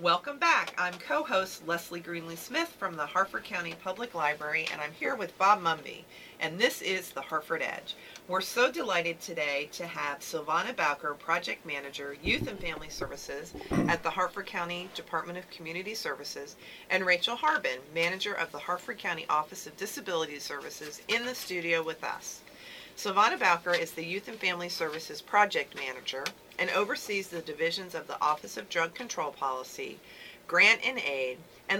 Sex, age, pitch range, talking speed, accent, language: female, 40-59, 160-200 Hz, 165 wpm, American, English